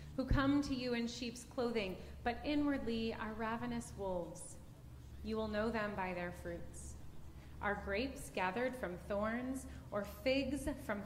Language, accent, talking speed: English, American, 145 wpm